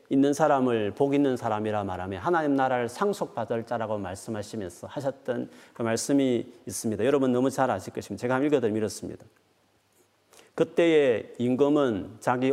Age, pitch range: 40-59, 105-130 Hz